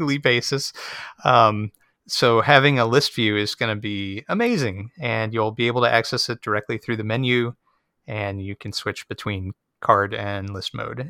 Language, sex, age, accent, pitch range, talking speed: English, male, 30-49, American, 105-130 Hz, 175 wpm